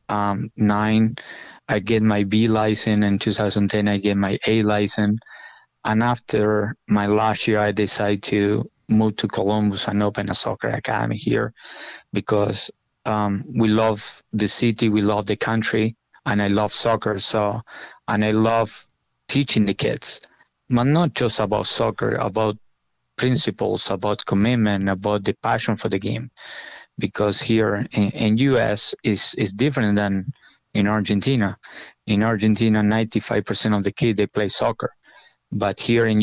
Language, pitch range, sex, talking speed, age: English, 100-110 Hz, male, 150 wpm, 20-39